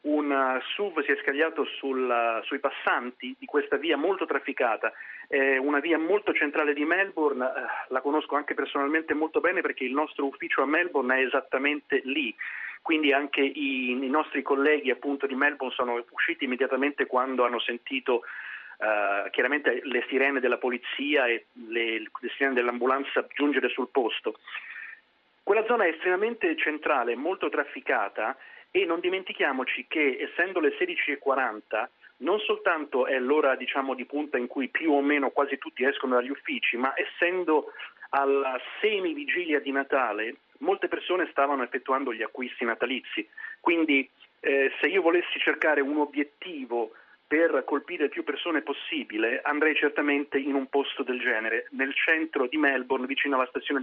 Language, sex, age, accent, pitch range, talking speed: Italian, male, 40-59, native, 130-175 Hz, 150 wpm